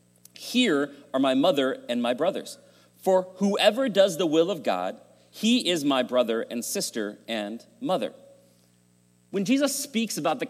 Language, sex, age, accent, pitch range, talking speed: English, male, 40-59, American, 150-240 Hz, 155 wpm